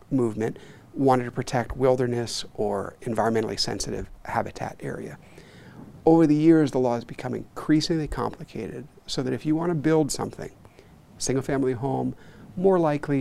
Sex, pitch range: male, 115-145 Hz